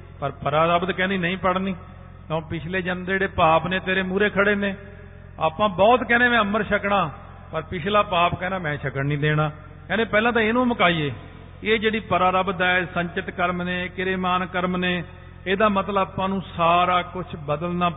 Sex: male